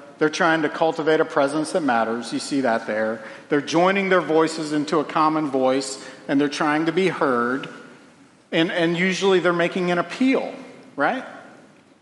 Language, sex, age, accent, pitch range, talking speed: English, male, 50-69, American, 135-185 Hz, 170 wpm